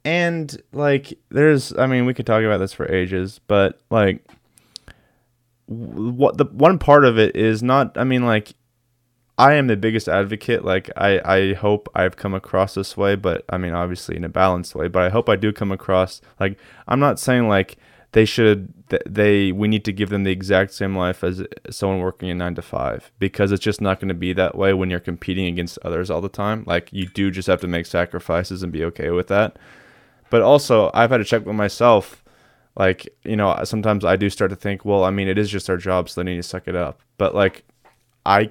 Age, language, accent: 20-39, English, American